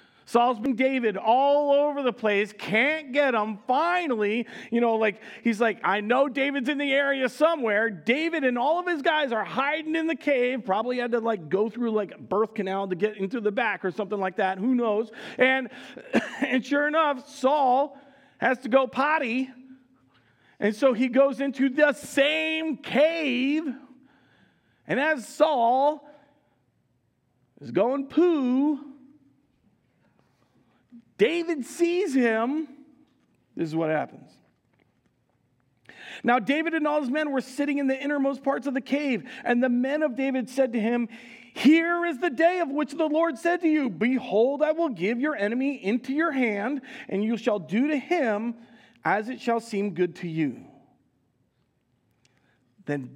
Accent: American